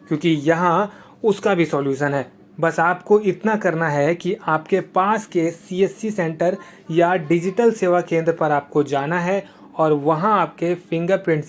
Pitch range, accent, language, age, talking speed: 150-180 Hz, native, Hindi, 30-49, 160 wpm